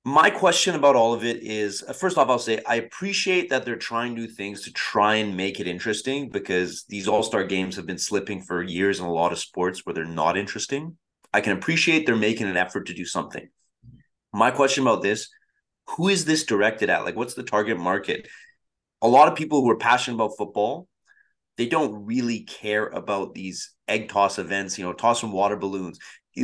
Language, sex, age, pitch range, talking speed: English, male, 30-49, 100-140 Hz, 200 wpm